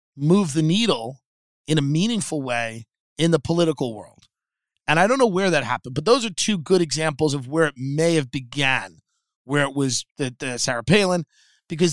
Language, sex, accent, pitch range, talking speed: English, male, American, 135-175 Hz, 185 wpm